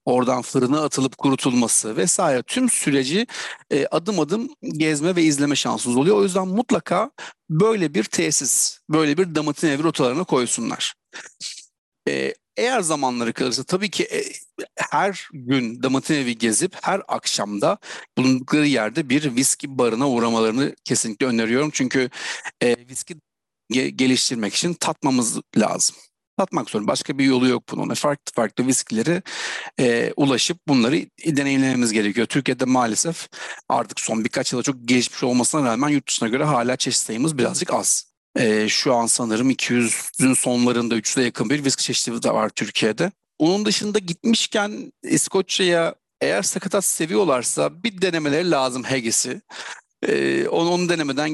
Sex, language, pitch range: male, Turkish, 125-175 Hz